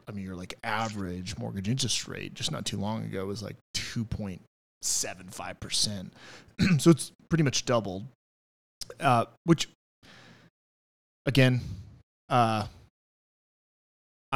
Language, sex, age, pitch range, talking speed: English, male, 20-39, 105-130 Hz, 105 wpm